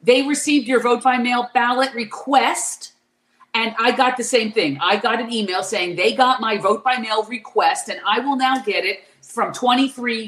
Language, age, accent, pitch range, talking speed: English, 50-69, American, 195-260 Hz, 200 wpm